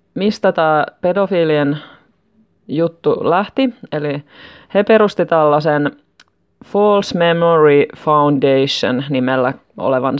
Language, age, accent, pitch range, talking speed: Finnish, 20-39, native, 135-175 Hz, 80 wpm